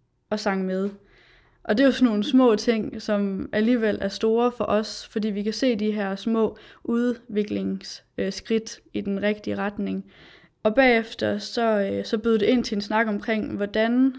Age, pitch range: 20-39, 190-225 Hz